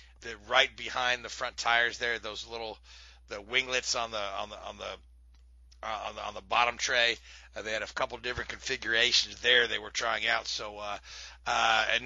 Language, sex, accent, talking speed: English, male, American, 205 wpm